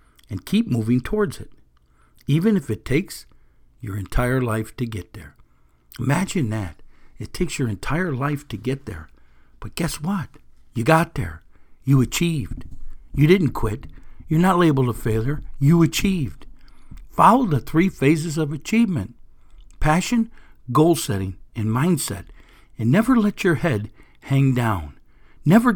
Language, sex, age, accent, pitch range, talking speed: English, male, 60-79, American, 105-165 Hz, 145 wpm